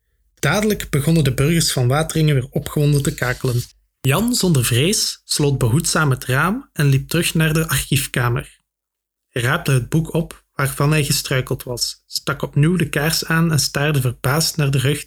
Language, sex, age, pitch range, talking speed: Dutch, male, 20-39, 135-160 Hz, 170 wpm